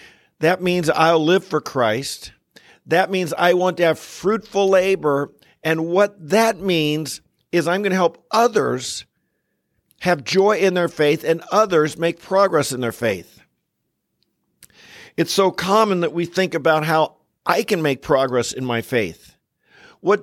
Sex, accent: male, American